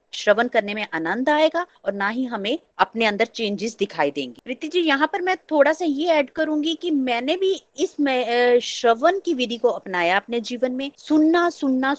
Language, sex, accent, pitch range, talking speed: Hindi, female, native, 235-335 Hz, 190 wpm